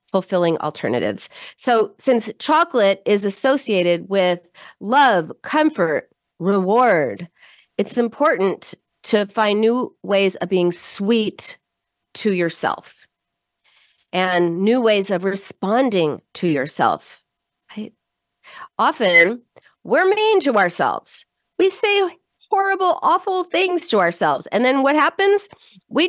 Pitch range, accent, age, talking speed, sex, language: 180-255 Hz, American, 40-59, 105 wpm, female, English